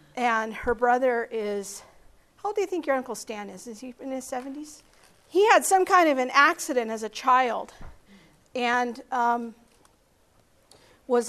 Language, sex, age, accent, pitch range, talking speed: English, female, 50-69, American, 220-260 Hz, 165 wpm